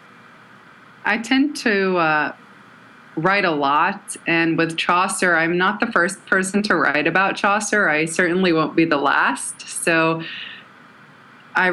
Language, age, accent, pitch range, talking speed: English, 20-39, American, 170-210 Hz, 140 wpm